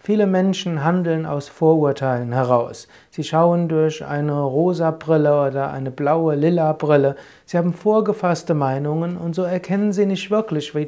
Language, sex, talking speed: German, male, 155 wpm